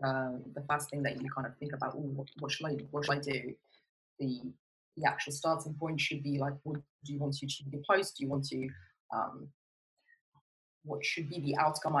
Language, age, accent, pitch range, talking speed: English, 20-39, British, 140-165 Hz, 230 wpm